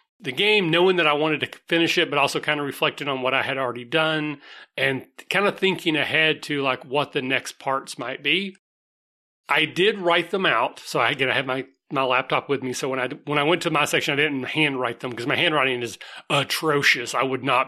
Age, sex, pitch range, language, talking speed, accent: 30-49, male, 130-170 Hz, English, 230 wpm, American